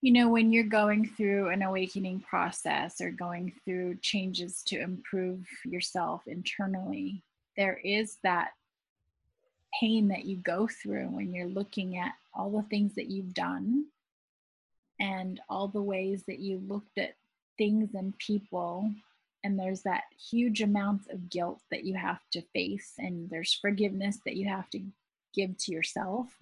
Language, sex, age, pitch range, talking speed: English, female, 30-49, 185-215 Hz, 155 wpm